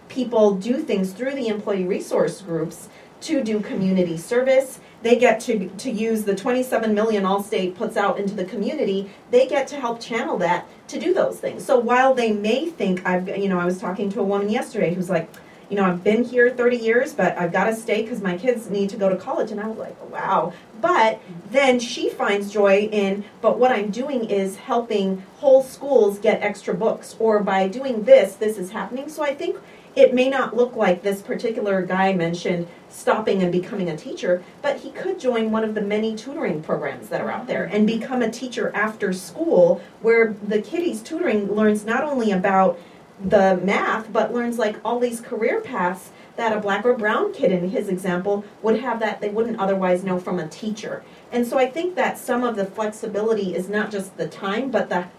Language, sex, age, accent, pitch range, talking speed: English, female, 40-59, American, 195-240 Hz, 210 wpm